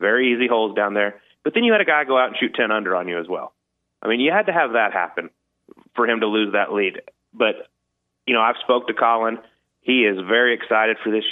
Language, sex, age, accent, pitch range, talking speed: English, male, 30-49, American, 100-120 Hz, 250 wpm